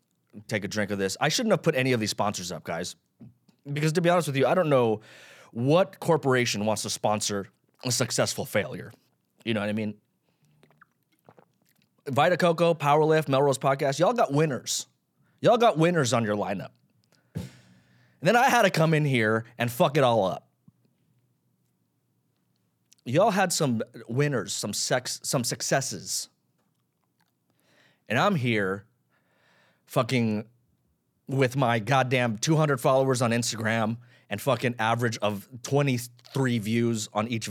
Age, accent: 30-49, American